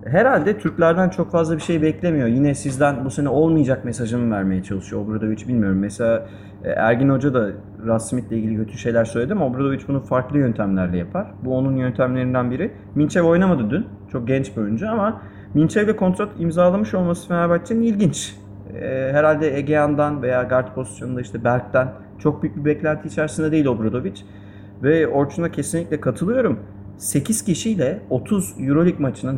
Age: 30-49